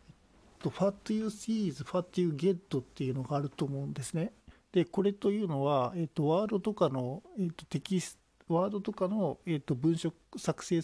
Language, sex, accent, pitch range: Japanese, male, native, 135-180 Hz